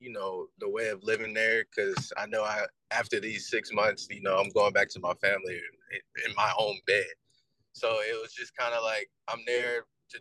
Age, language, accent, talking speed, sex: 20-39, English, American, 215 wpm, male